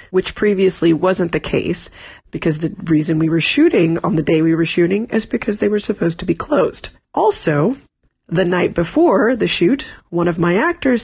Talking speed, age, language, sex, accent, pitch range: 190 wpm, 30-49, English, female, American, 160-190 Hz